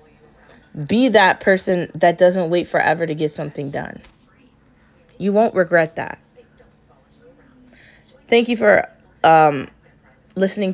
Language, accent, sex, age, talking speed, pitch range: English, American, female, 20-39, 110 wpm, 160-205 Hz